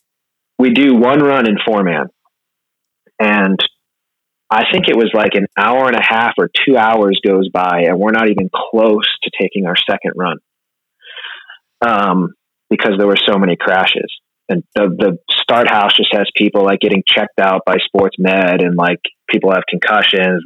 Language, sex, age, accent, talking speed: English, male, 30-49, American, 175 wpm